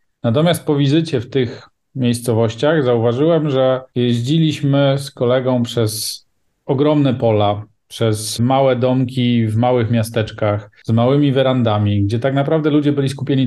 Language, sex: Polish, male